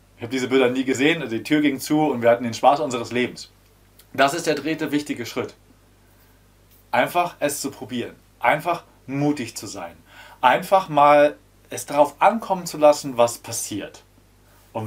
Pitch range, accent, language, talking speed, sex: 105-140 Hz, German, German, 165 wpm, male